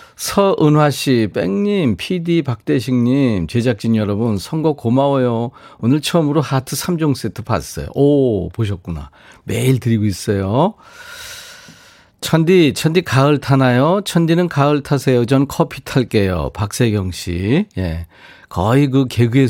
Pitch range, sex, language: 110-155 Hz, male, Korean